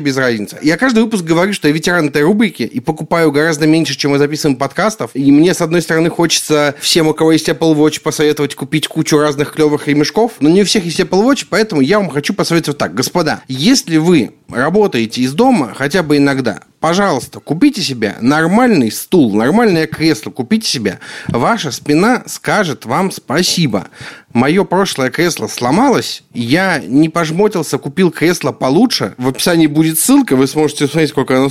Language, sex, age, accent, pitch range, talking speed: Russian, male, 30-49, native, 135-185 Hz, 175 wpm